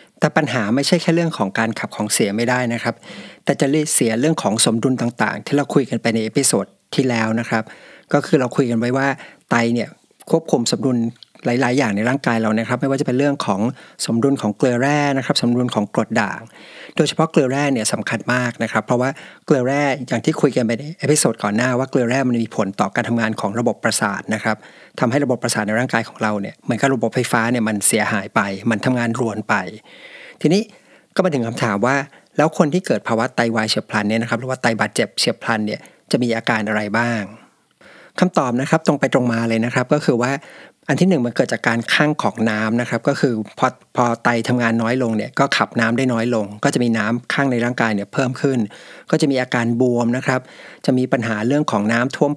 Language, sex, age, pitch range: Thai, male, 60-79, 115-140 Hz